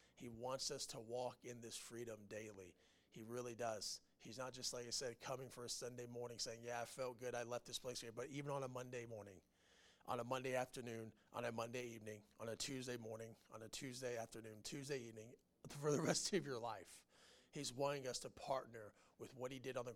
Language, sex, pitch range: English, male, 120-145 Hz